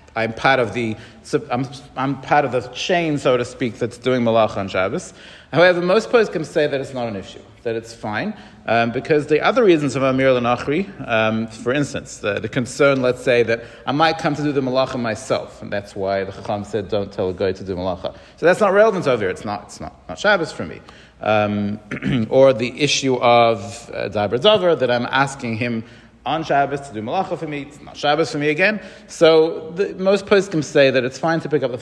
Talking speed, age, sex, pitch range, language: 225 wpm, 40-59, male, 115-155 Hz, English